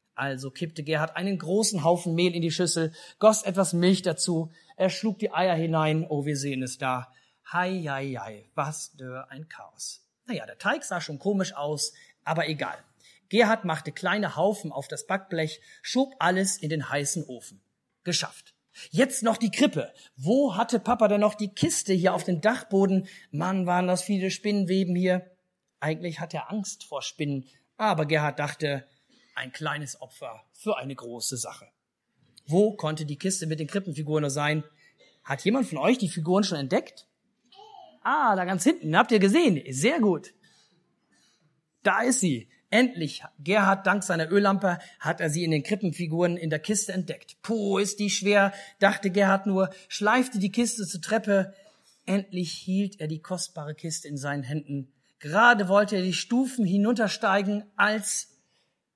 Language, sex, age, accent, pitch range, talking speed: German, male, 40-59, German, 155-200 Hz, 165 wpm